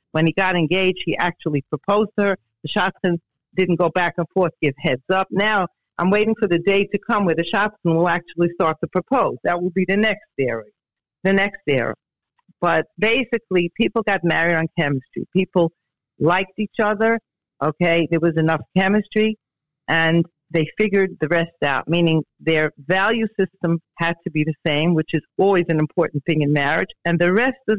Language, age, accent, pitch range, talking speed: English, 50-69, American, 160-195 Hz, 185 wpm